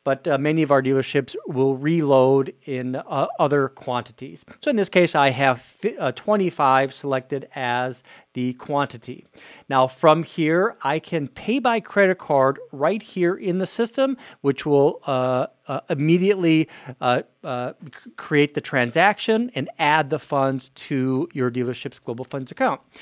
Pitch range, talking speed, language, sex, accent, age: 130-170 Hz, 150 wpm, English, male, American, 40-59